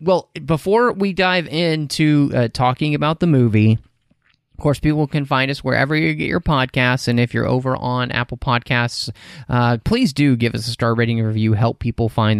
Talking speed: 195 wpm